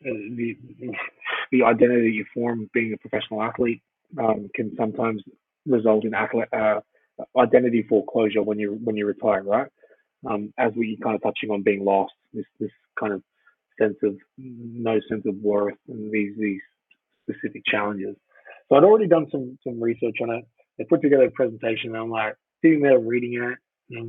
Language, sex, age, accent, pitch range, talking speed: English, male, 30-49, American, 110-130 Hz, 175 wpm